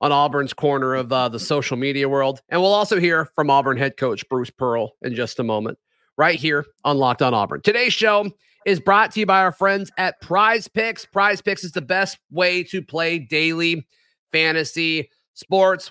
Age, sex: 30-49, male